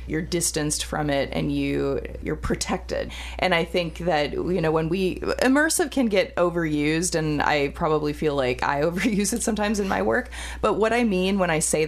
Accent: American